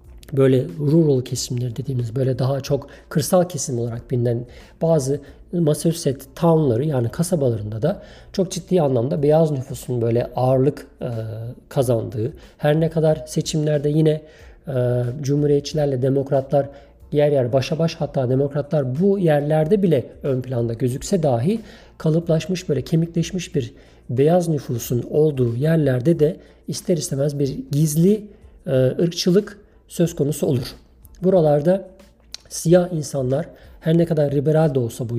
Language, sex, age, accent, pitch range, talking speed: Turkish, male, 50-69, native, 135-170 Hz, 125 wpm